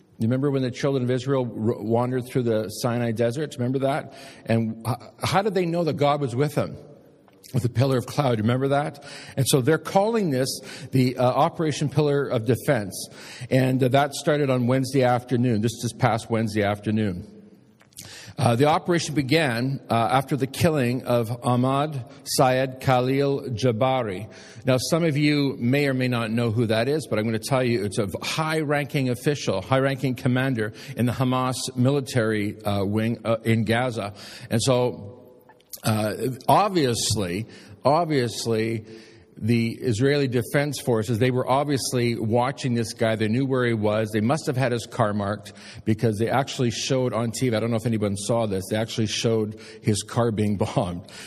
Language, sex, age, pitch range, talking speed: English, male, 50-69, 115-135 Hz, 175 wpm